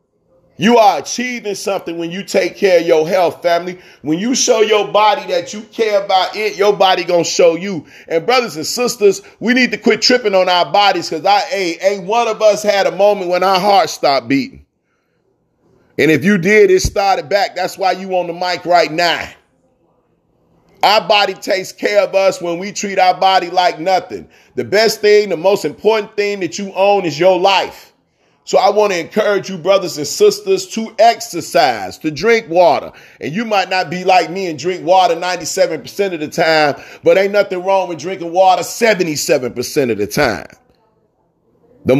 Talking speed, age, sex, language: 195 wpm, 30-49, male, English